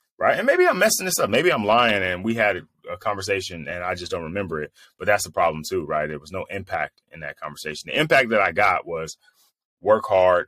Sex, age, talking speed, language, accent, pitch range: male, 30-49, 240 wpm, English, American, 85-110 Hz